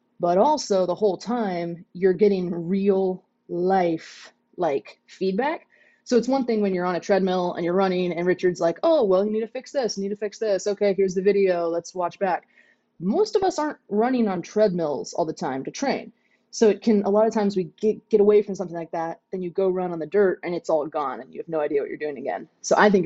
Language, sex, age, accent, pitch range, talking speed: English, female, 20-39, American, 175-215 Hz, 245 wpm